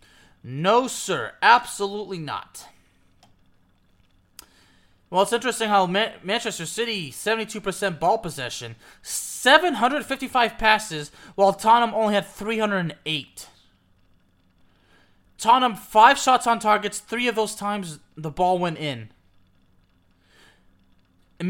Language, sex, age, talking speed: English, male, 20-39, 100 wpm